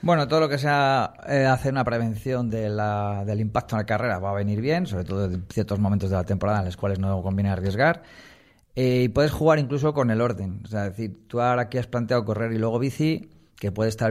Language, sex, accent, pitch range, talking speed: Spanish, male, Spanish, 100-120 Hz, 245 wpm